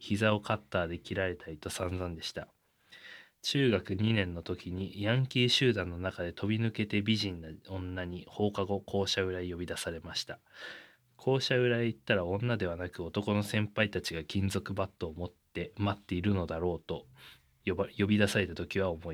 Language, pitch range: Japanese, 90-110 Hz